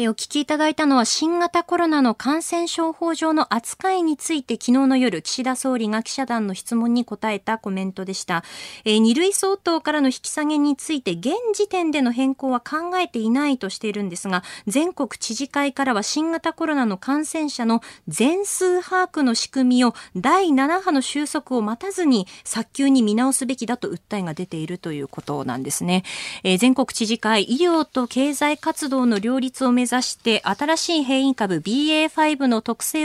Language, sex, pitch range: Japanese, female, 225-310 Hz